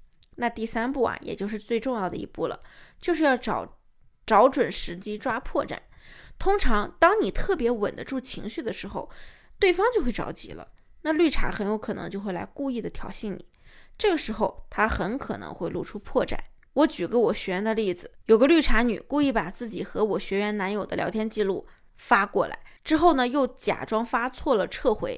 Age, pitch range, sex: 20-39, 215-285 Hz, female